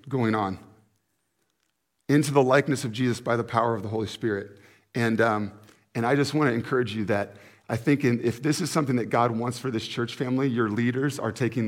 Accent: American